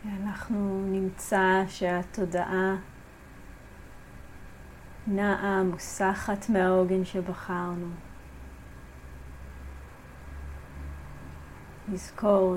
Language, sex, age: English, female, 30-49